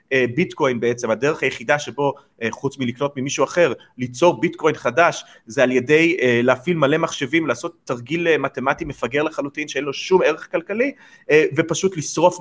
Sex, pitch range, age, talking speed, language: male, 130-205 Hz, 30-49, 145 wpm, Hebrew